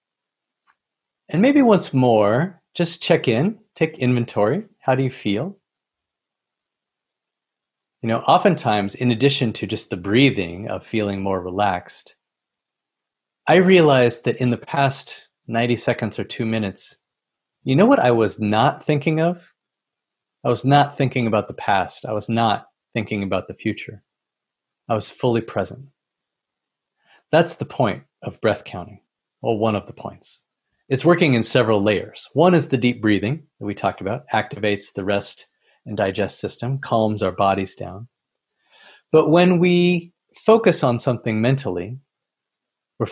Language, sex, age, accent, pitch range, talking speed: English, male, 30-49, American, 105-150 Hz, 145 wpm